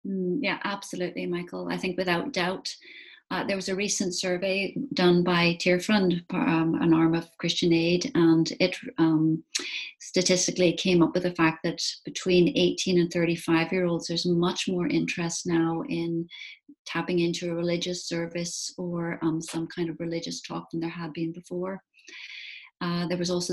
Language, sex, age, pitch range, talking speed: English, female, 30-49, 165-185 Hz, 165 wpm